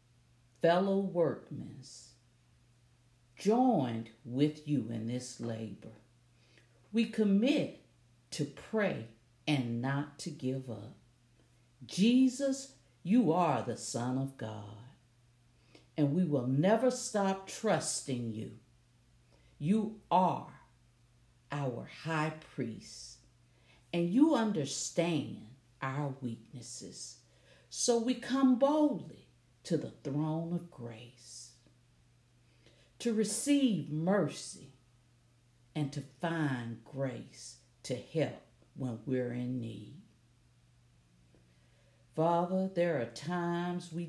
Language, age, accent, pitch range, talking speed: English, 50-69, American, 120-170 Hz, 95 wpm